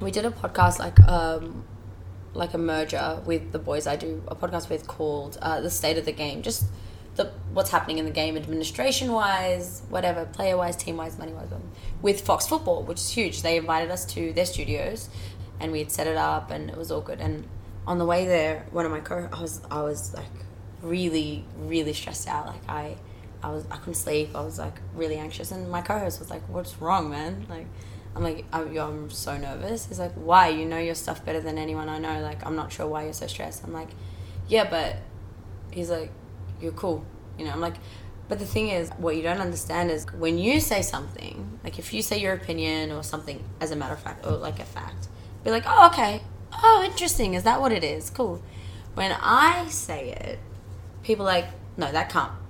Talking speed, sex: 215 wpm, female